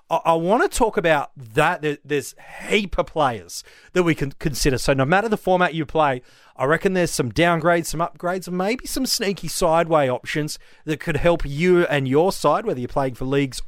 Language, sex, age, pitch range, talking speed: English, male, 30-49, 145-205 Hz, 200 wpm